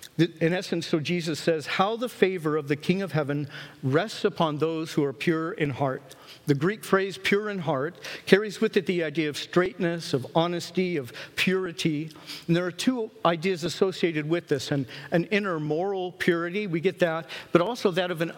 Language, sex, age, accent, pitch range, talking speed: English, male, 50-69, American, 155-195 Hz, 195 wpm